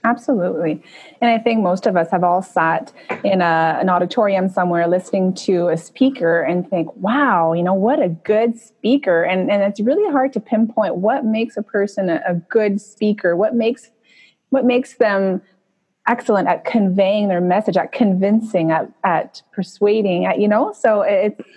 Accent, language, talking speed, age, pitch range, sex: American, English, 175 wpm, 30-49, 180-225 Hz, female